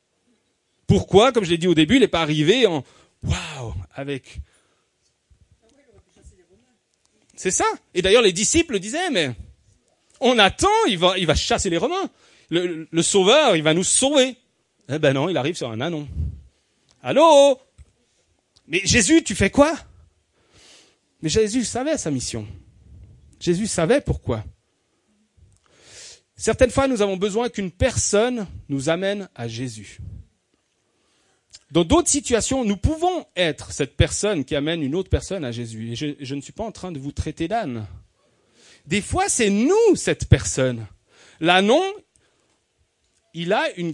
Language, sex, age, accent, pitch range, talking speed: French, male, 40-59, French, 135-220 Hz, 150 wpm